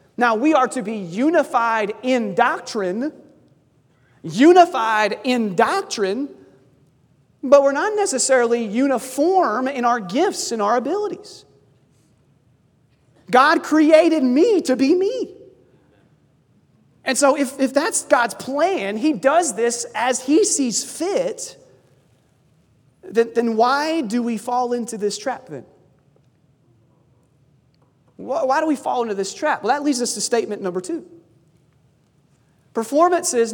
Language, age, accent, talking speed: English, 30-49, American, 120 wpm